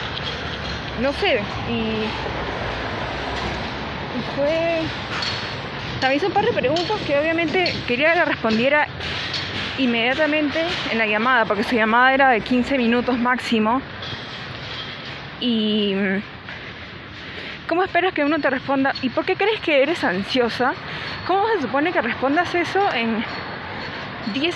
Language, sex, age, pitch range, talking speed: Spanish, female, 20-39, 220-290 Hz, 120 wpm